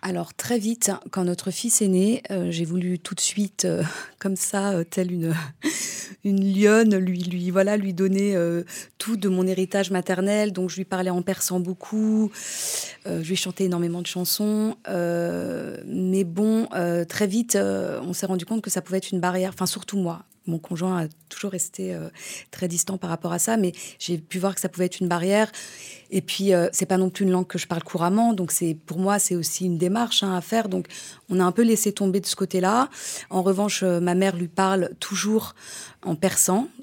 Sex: female